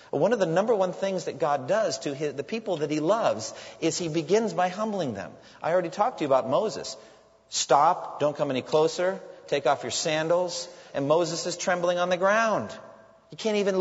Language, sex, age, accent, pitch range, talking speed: English, male, 40-59, American, 145-195 Hz, 210 wpm